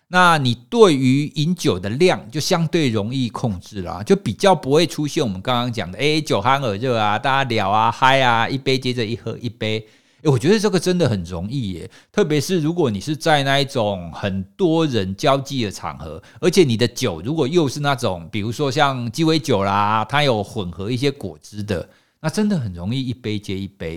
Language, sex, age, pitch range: Chinese, male, 50-69, 110-155 Hz